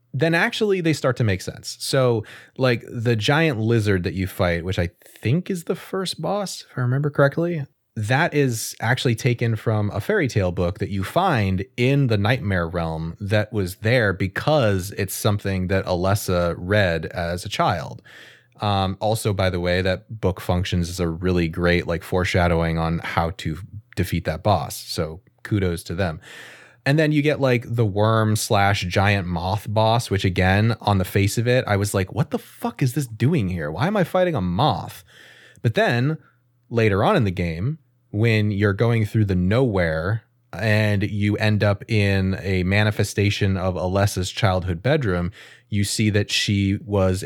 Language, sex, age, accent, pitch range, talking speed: English, male, 20-39, American, 95-120 Hz, 180 wpm